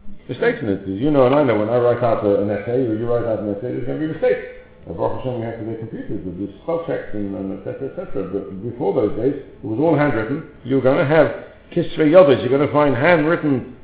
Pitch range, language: 110-150 Hz, English